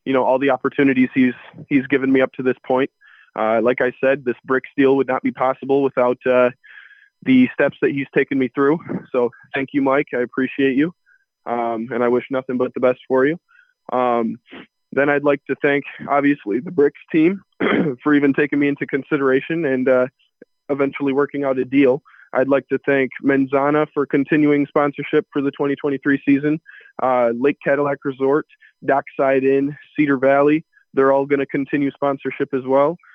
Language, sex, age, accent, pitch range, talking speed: English, male, 20-39, American, 130-145 Hz, 185 wpm